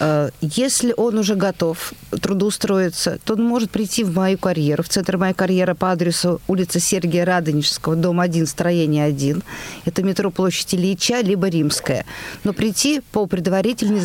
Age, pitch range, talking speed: 50-69, 170-220 Hz, 150 wpm